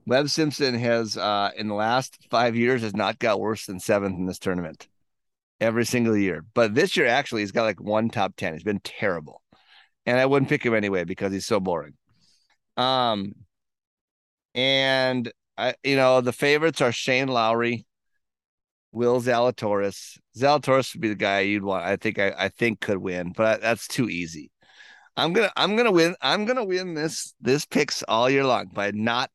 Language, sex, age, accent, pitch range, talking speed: English, male, 30-49, American, 105-145 Hz, 185 wpm